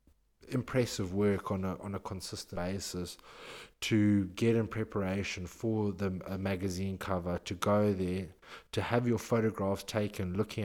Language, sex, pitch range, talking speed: English, male, 95-110 Hz, 145 wpm